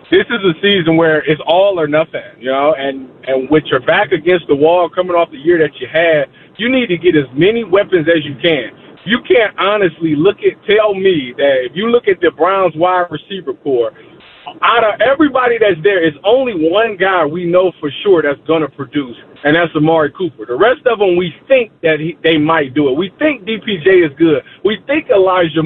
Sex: male